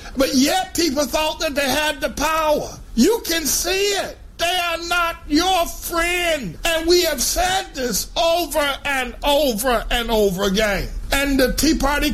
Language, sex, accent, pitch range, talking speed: English, male, American, 225-330 Hz, 165 wpm